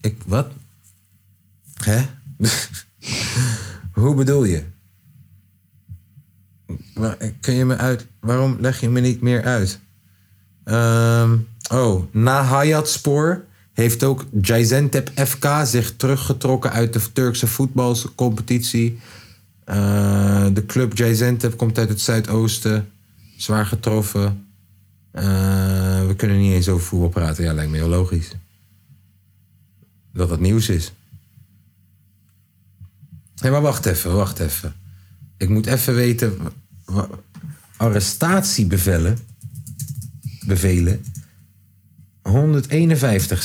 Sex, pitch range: male, 95-125 Hz